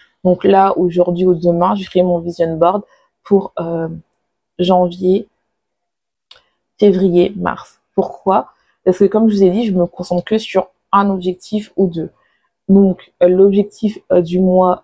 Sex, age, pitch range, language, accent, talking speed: female, 20-39, 175-195 Hz, French, French, 155 wpm